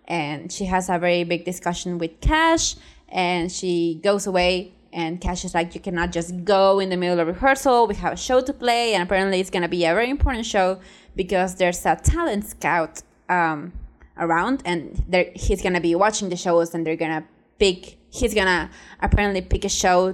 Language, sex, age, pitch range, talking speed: English, female, 20-39, 175-220 Hz, 195 wpm